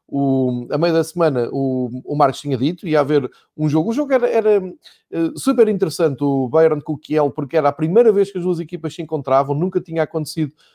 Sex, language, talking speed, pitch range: male, Portuguese, 220 wpm, 145-185 Hz